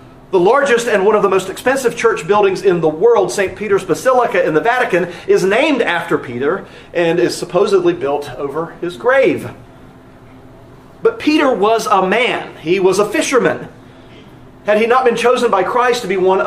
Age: 40-59